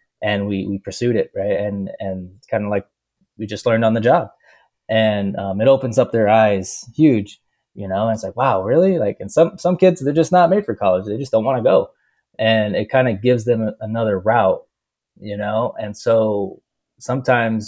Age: 20-39